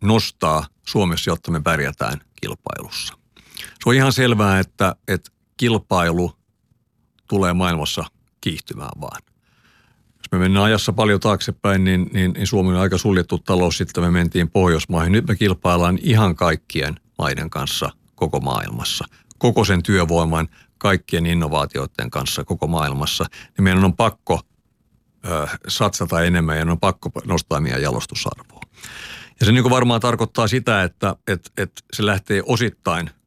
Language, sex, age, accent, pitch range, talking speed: Finnish, male, 60-79, native, 85-105 Hz, 135 wpm